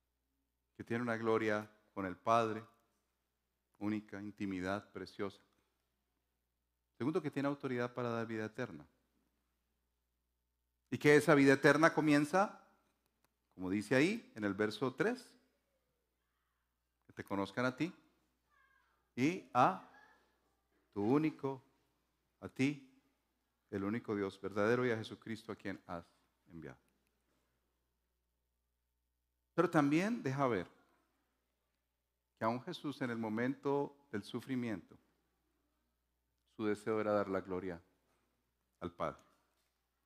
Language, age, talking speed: Spanish, 40-59, 110 wpm